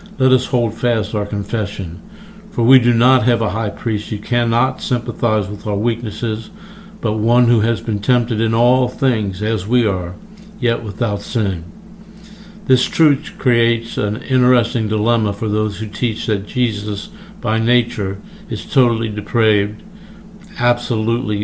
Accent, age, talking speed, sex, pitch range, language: American, 60-79, 150 wpm, male, 105-125 Hz, English